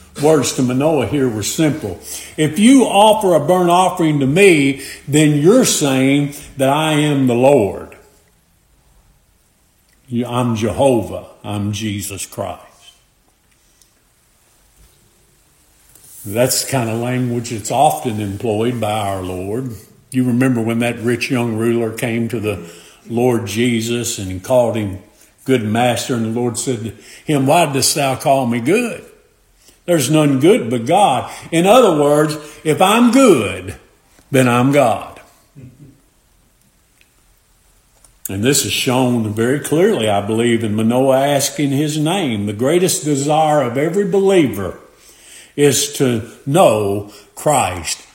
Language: English